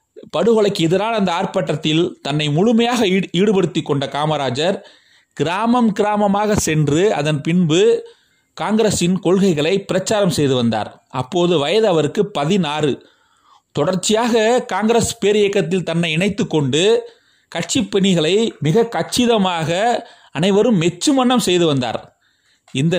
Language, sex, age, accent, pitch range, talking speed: Tamil, male, 30-49, native, 160-225 Hz, 100 wpm